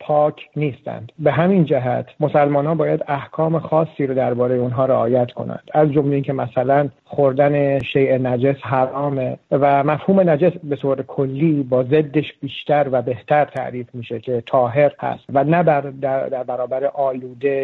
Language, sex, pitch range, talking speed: Persian, male, 135-155 Hz, 155 wpm